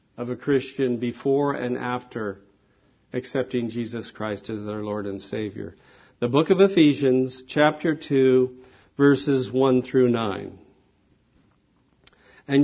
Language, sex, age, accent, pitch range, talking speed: English, male, 50-69, American, 130-185 Hz, 120 wpm